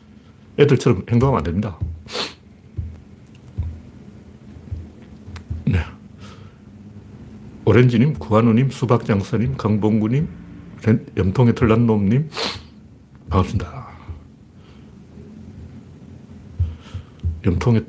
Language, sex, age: Korean, male, 60-79